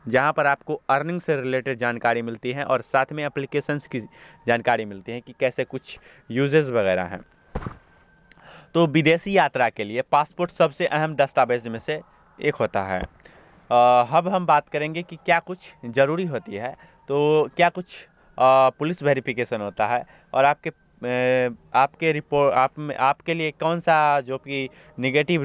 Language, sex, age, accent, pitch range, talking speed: Hindi, male, 20-39, native, 130-155 Hz, 160 wpm